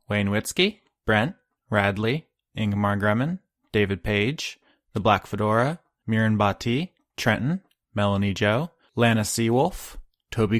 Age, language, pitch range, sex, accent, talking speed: 20-39, English, 105-135 Hz, male, American, 110 wpm